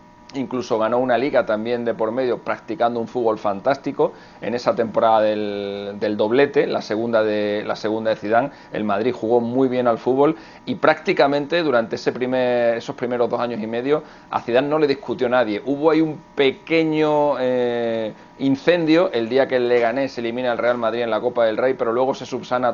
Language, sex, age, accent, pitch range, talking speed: Spanish, male, 40-59, Spanish, 110-135 Hz, 195 wpm